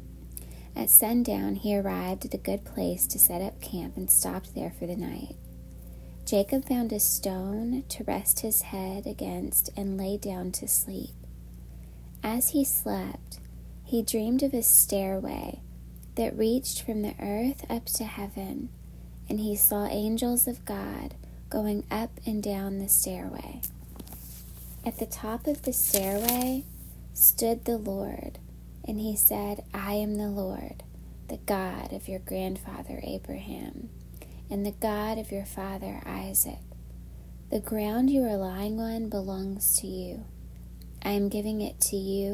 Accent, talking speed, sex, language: American, 145 wpm, female, English